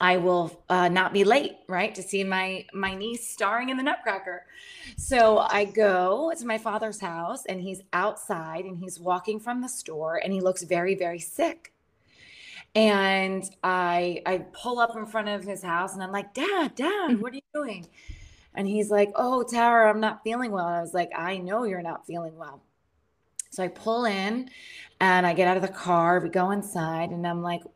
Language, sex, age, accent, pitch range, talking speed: English, female, 20-39, American, 175-225 Hz, 200 wpm